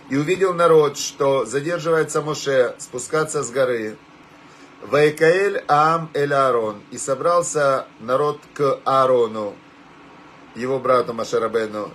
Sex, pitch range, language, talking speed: male, 135-170 Hz, Russian, 100 wpm